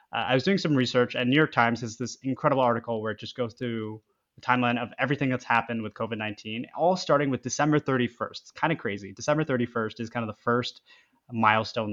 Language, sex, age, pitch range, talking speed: English, male, 20-39, 115-135 Hz, 220 wpm